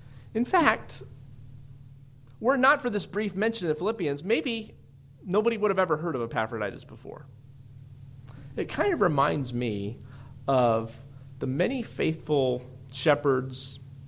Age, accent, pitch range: 30-49, American, 130-155 Hz